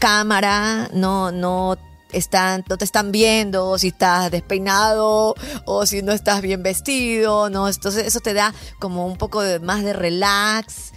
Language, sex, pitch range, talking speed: Spanish, female, 170-210 Hz, 165 wpm